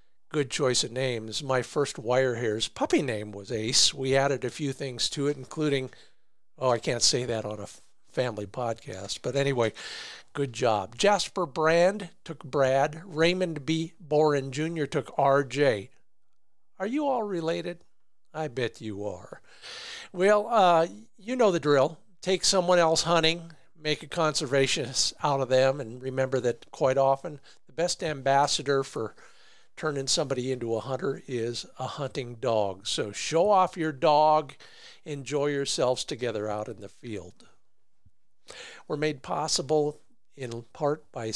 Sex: male